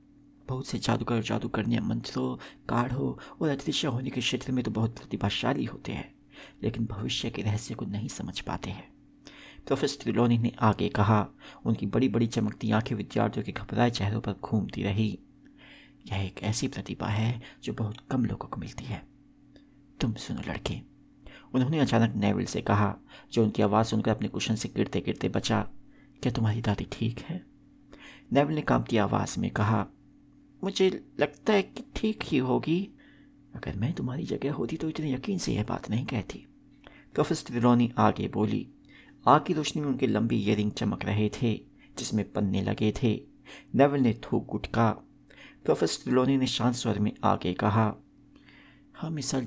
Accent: native